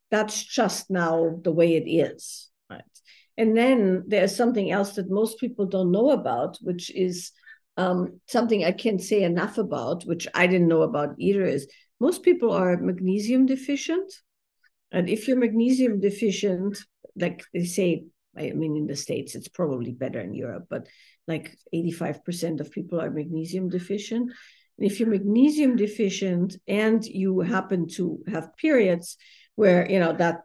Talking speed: 160 wpm